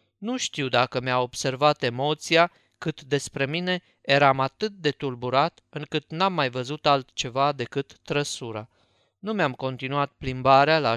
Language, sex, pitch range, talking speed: Romanian, male, 125-160 Hz, 135 wpm